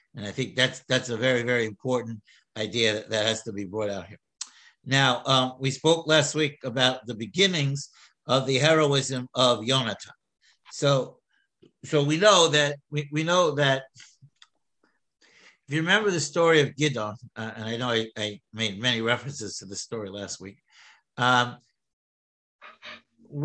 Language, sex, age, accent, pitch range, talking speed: English, male, 60-79, American, 120-155 Hz, 160 wpm